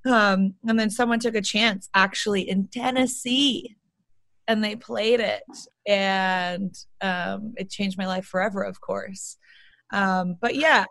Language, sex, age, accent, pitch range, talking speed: English, female, 30-49, American, 185-225 Hz, 145 wpm